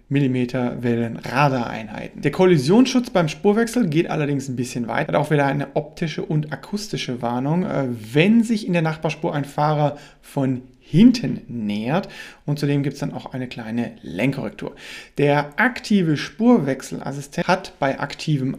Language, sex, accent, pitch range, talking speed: German, male, German, 135-180 Hz, 140 wpm